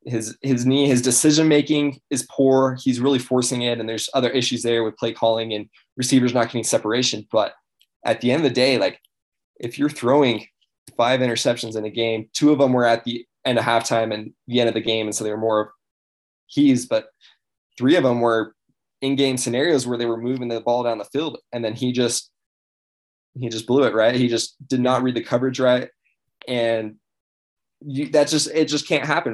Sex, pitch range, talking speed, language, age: male, 115-140 Hz, 215 wpm, English, 20-39